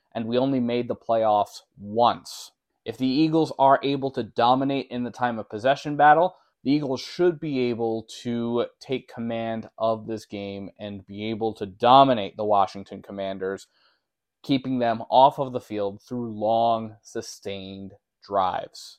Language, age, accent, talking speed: English, 20-39, American, 155 wpm